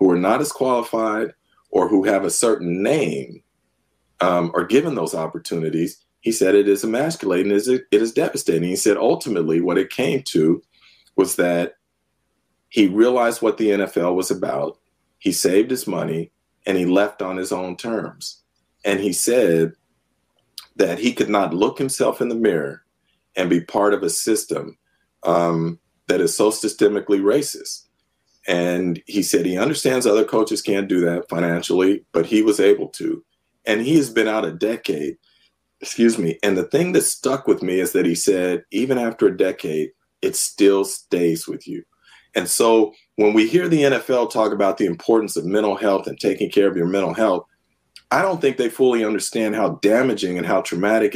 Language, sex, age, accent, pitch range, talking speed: English, male, 40-59, American, 80-110 Hz, 180 wpm